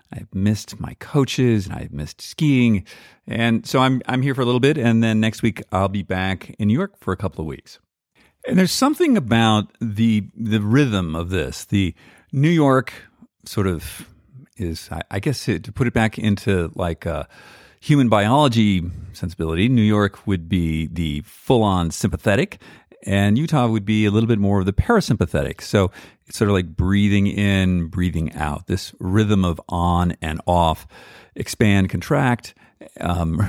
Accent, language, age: American, English, 50-69